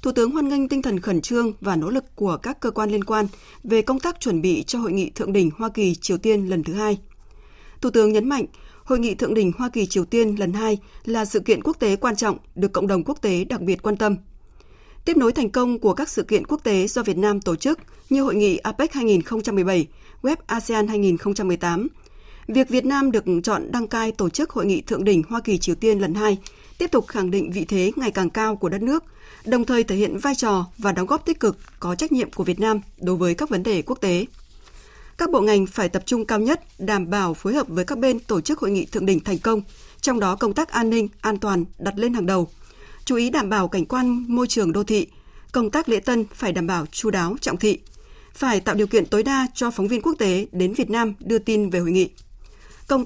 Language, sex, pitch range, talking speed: Vietnamese, female, 195-245 Hz, 245 wpm